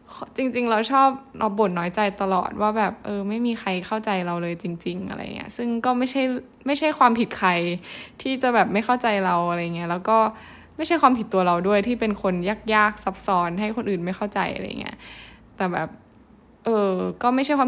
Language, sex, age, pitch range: Thai, female, 10-29, 195-235 Hz